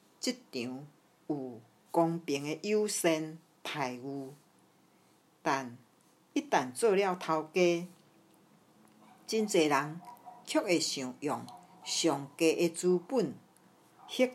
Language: Chinese